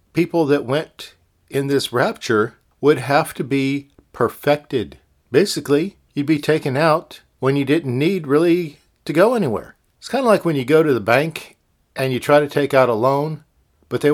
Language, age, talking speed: English, 50-69, 185 wpm